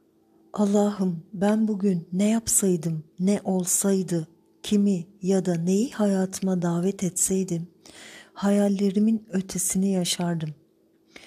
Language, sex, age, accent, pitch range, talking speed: Turkish, female, 50-69, native, 180-205 Hz, 90 wpm